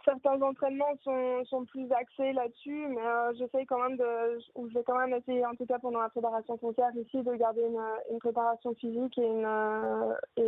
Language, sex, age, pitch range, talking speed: French, female, 20-39, 220-245 Hz, 205 wpm